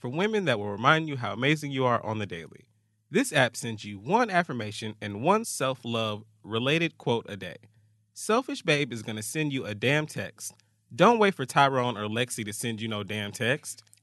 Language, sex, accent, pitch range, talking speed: English, male, American, 110-150 Hz, 205 wpm